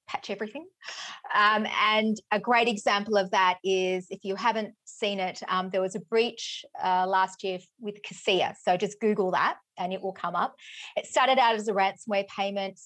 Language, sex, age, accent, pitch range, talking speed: English, female, 30-49, Australian, 190-235 Hz, 190 wpm